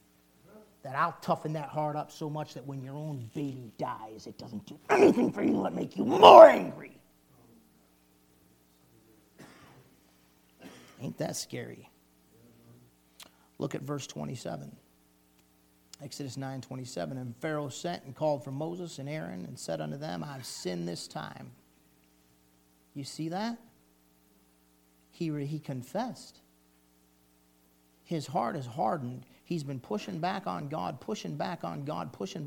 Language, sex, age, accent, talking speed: English, male, 40-59, American, 135 wpm